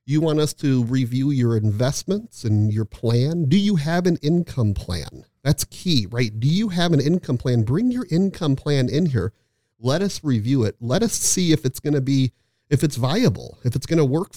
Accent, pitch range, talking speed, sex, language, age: American, 110-140 Hz, 215 wpm, male, English, 40-59